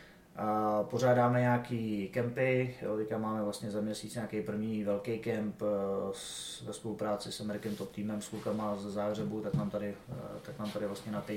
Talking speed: 165 wpm